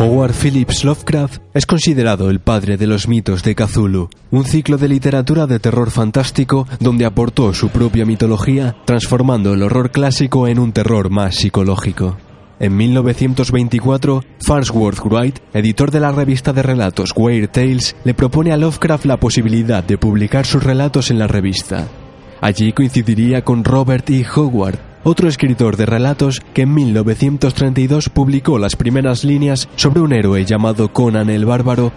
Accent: Spanish